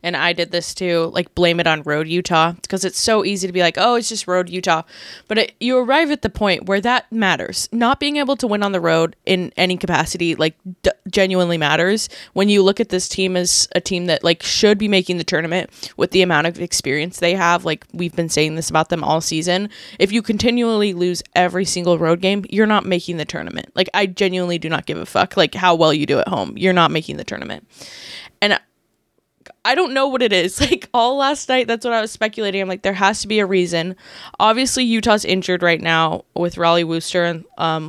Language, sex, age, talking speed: English, female, 10-29, 235 wpm